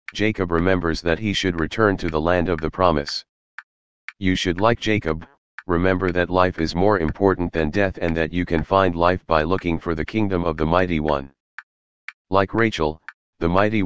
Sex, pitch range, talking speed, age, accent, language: male, 80-95 Hz, 185 wpm, 40-59, American, English